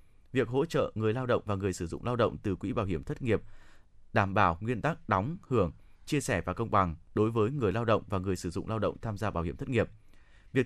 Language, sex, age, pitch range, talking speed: Vietnamese, male, 20-39, 95-125 Hz, 265 wpm